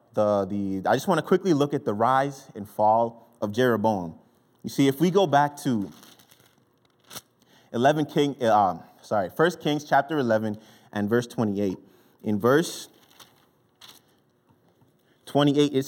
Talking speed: 135 wpm